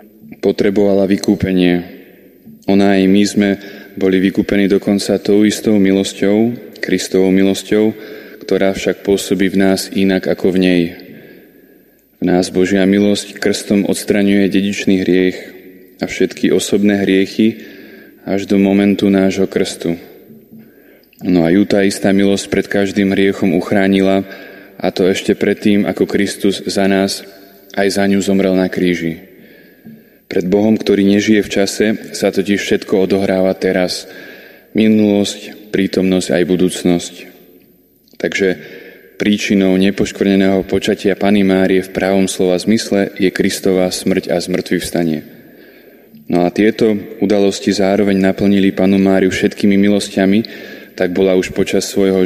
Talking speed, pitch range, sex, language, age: 125 wpm, 95-100 Hz, male, Slovak, 20-39